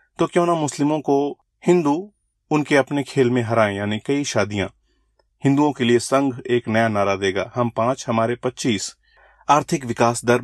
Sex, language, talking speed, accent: male, Hindi, 165 wpm, native